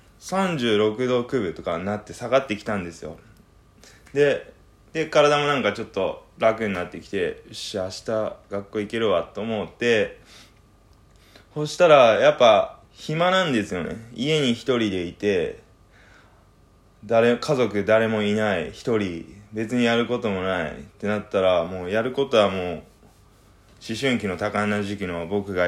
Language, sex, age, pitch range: Japanese, male, 20-39, 100-120 Hz